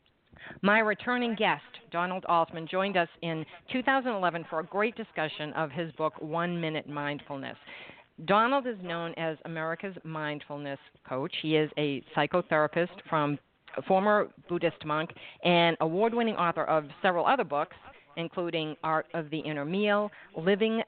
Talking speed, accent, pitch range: 140 wpm, American, 155-190 Hz